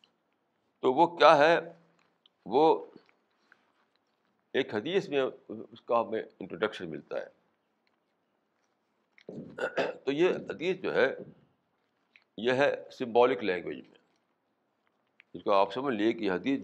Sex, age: male, 60-79